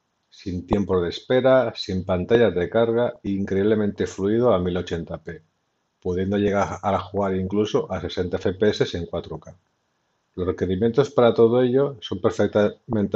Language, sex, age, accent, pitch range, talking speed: Spanish, male, 50-69, Spanish, 90-110 Hz, 135 wpm